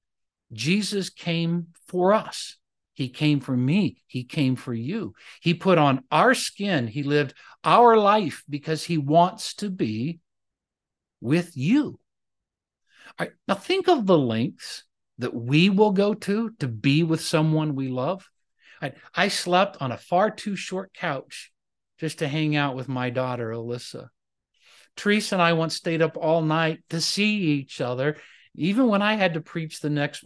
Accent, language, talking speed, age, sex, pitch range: American, English, 160 wpm, 50-69, male, 135-190 Hz